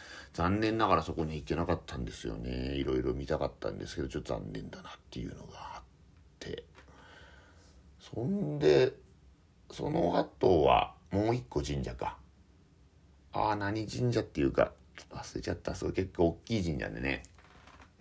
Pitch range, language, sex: 75-105 Hz, Japanese, male